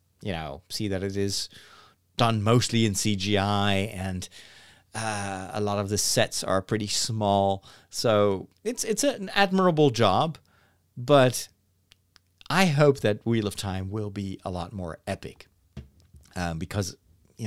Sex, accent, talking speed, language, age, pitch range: male, American, 145 wpm, English, 40-59, 95-145 Hz